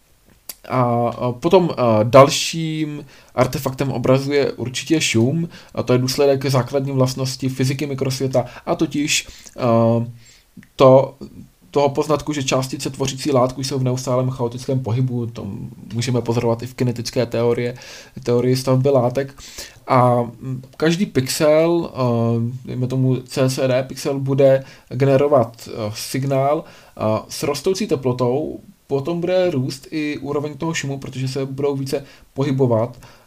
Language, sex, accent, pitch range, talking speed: Czech, male, native, 125-150 Hz, 115 wpm